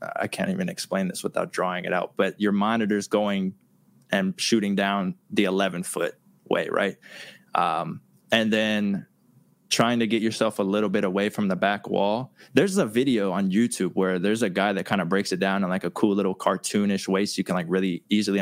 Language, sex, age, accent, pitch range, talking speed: English, male, 20-39, American, 95-110 Hz, 205 wpm